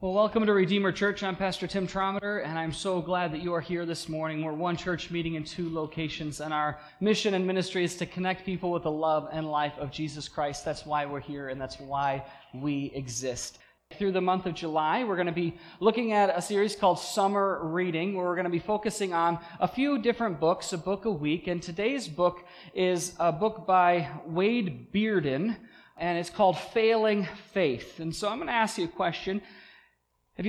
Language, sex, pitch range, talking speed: English, male, 160-200 Hz, 210 wpm